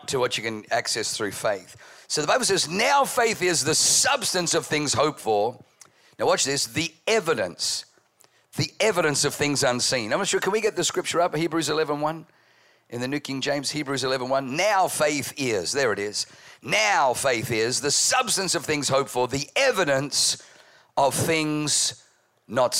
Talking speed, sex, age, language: 185 wpm, male, 50-69, English